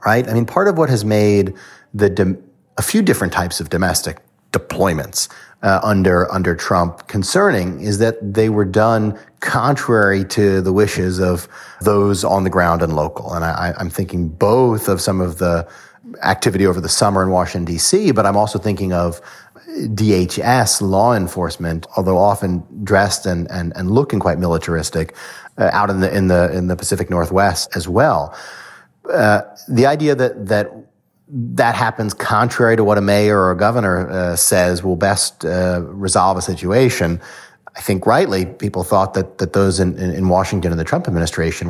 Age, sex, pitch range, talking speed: 30-49, male, 90-105 Hz, 175 wpm